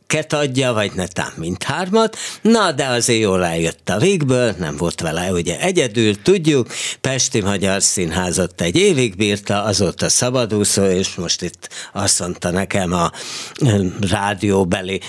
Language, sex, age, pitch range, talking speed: Hungarian, male, 60-79, 90-125 Hz, 130 wpm